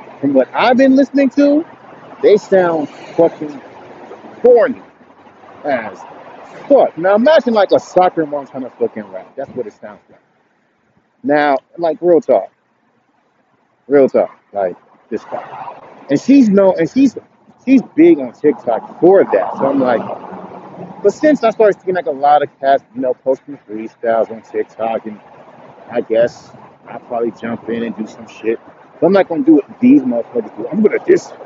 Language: English